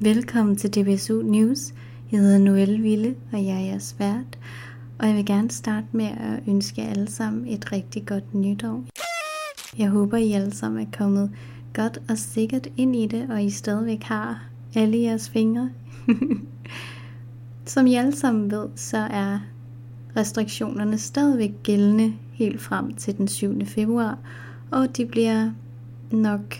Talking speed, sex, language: 150 wpm, female, Danish